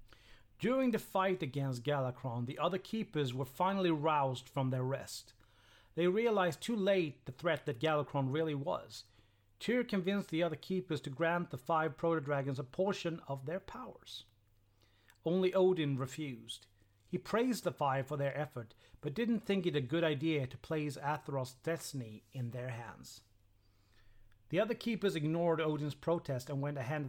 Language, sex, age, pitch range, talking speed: Swedish, male, 40-59, 125-165 Hz, 160 wpm